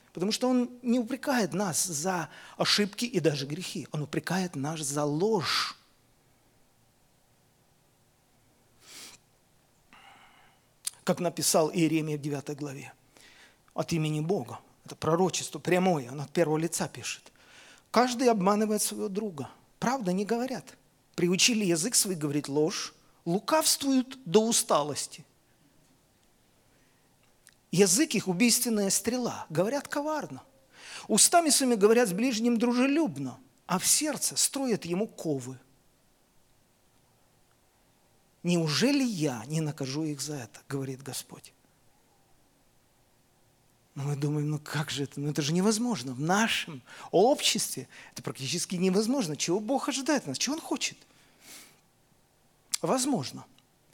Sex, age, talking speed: male, 40-59, 110 wpm